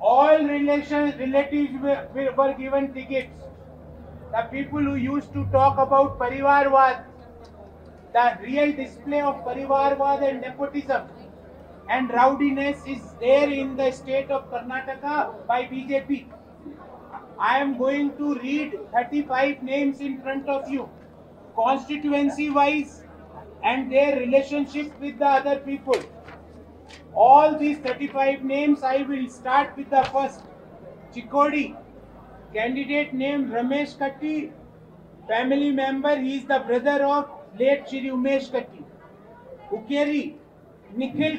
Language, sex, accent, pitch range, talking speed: Hindi, male, native, 260-285 Hz, 115 wpm